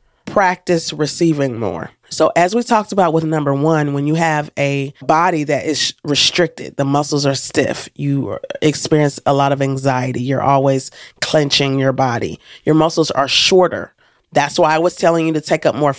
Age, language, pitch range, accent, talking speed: 30-49, English, 145-175 Hz, American, 180 wpm